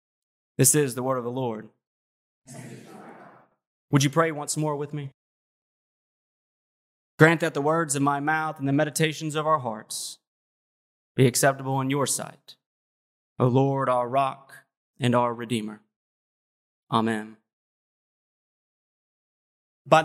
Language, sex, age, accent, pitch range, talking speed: English, male, 30-49, American, 140-175 Hz, 125 wpm